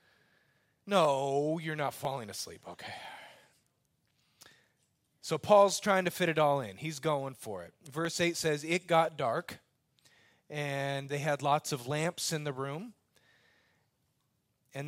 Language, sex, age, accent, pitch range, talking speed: English, male, 30-49, American, 125-160 Hz, 135 wpm